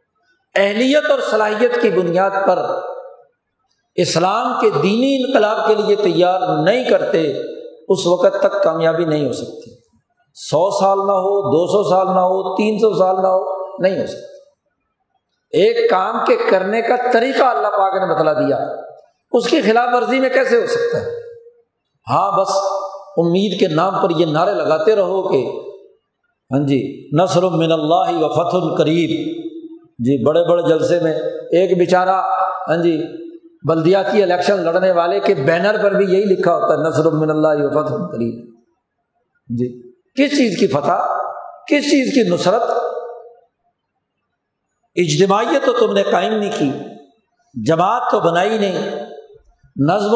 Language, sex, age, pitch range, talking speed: Urdu, male, 50-69, 180-260 Hz, 150 wpm